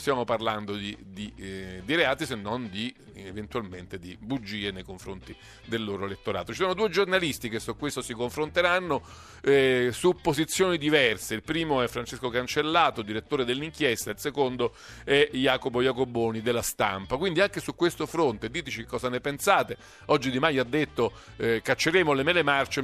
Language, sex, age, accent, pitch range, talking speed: Italian, male, 50-69, native, 110-155 Hz, 170 wpm